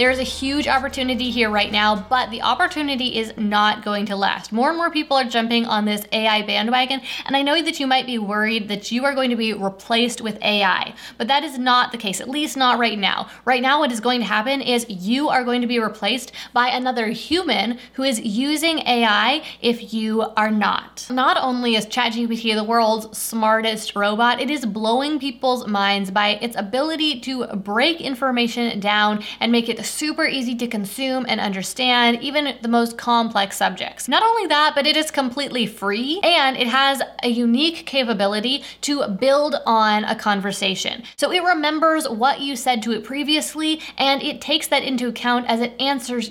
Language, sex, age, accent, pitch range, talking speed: English, female, 20-39, American, 215-275 Hz, 195 wpm